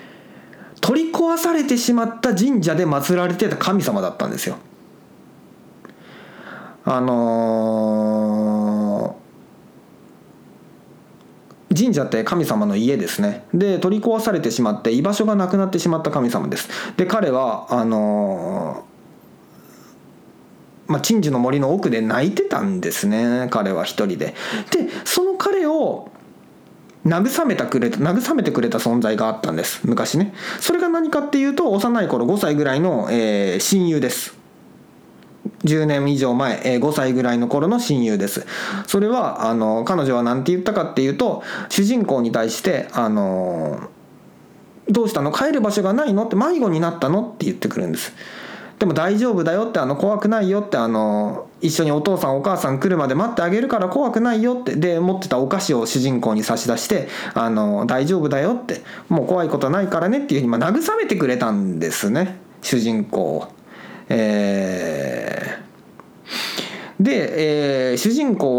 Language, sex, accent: Japanese, male, native